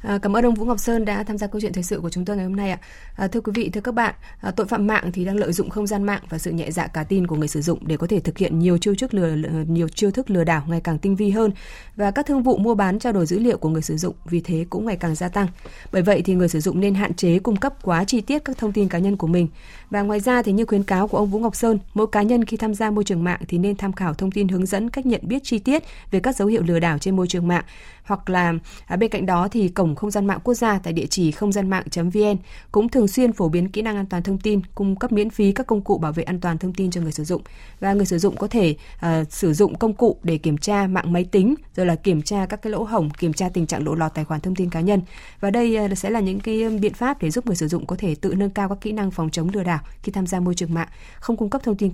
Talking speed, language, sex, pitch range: 315 wpm, Vietnamese, female, 170-210 Hz